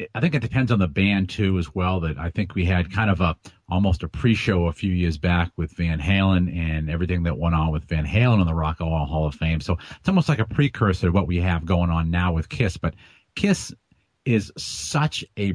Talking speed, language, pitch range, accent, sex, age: 245 wpm, English, 90-110 Hz, American, male, 40-59